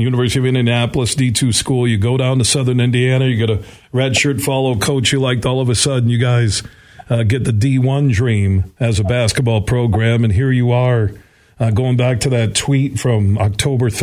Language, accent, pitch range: English, American, 115-130 Hz